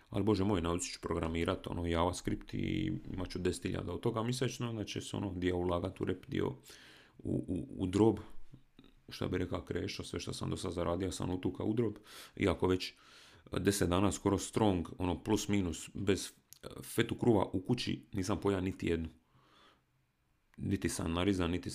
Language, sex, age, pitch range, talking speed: Croatian, male, 40-59, 85-105 Hz, 175 wpm